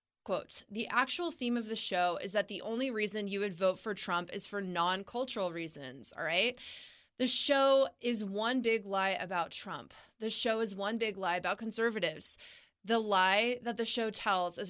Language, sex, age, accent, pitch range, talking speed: English, female, 20-39, American, 190-225 Hz, 190 wpm